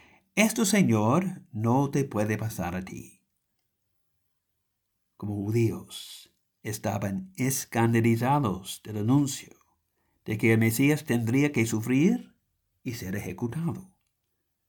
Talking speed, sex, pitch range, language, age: 100 wpm, male, 95-145 Hz, English, 60-79